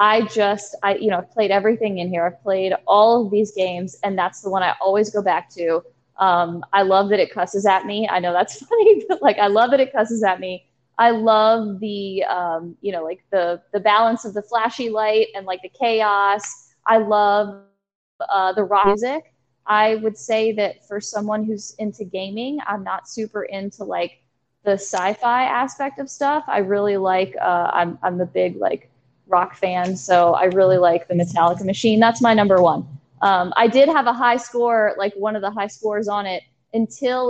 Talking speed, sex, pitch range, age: 205 wpm, female, 185-225 Hz, 20-39